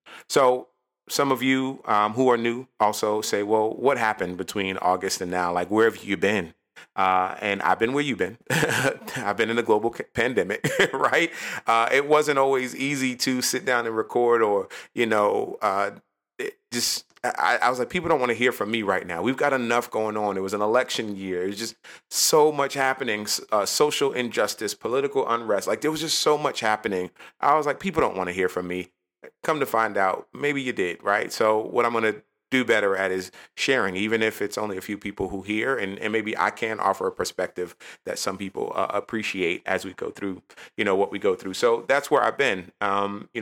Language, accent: English, American